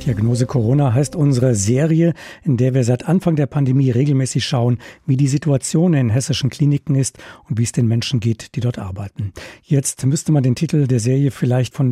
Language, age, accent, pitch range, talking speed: German, 50-69, German, 120-150 Hz, 195 wpm